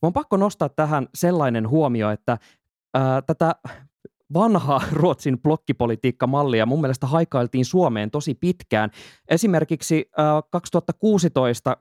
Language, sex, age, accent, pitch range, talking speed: Finnish, male, 20-39, native, 120-160 Hz, 110 wpm